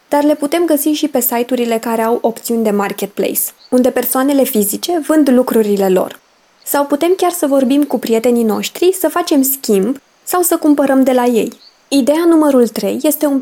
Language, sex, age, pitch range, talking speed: Romanian, female, 20-39, 215-285 Hz, 180 wpm